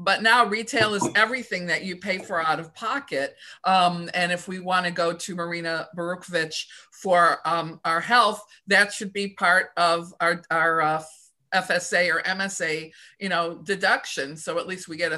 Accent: American